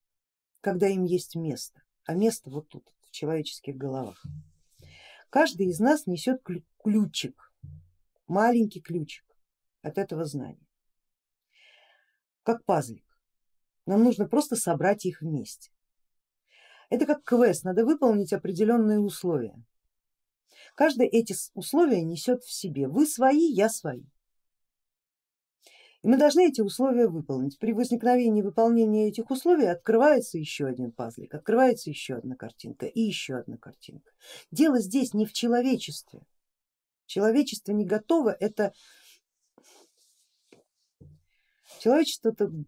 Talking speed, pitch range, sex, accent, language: 110 wpm, 160-240 Hz, female, native, Russian